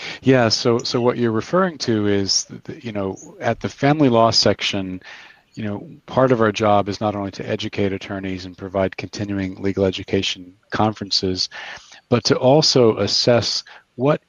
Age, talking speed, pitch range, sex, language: 40-59, 165 wpm, 95-115 Hz, male, English